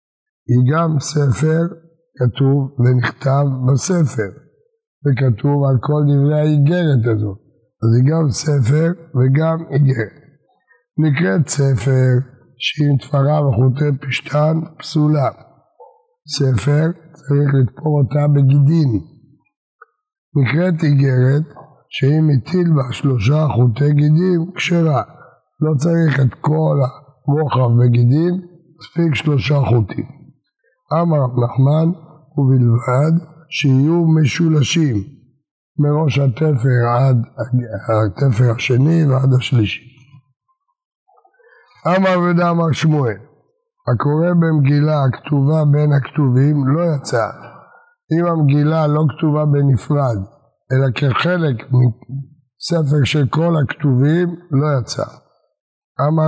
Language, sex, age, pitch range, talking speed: Hebrew, male, 60-79, 130-160 Hz, 90 wpm